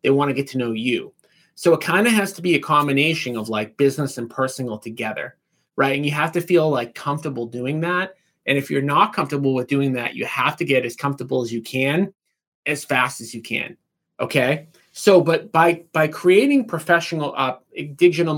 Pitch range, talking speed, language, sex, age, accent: 130-170 Hz, 210 wpm, English, male, 30-49, American